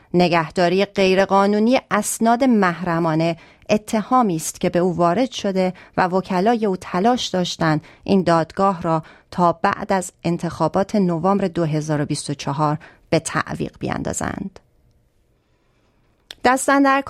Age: 30-49